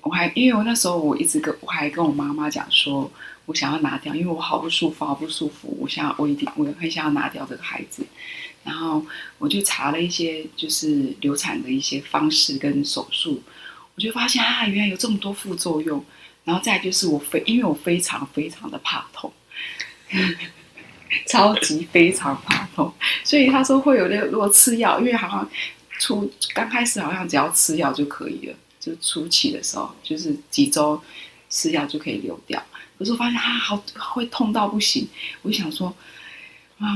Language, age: Chinese, 20-39